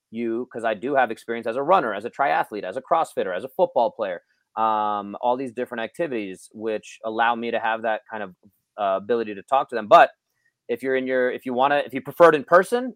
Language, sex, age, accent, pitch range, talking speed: English, male, 30-49, American, 120-150 Hz, 245 wpm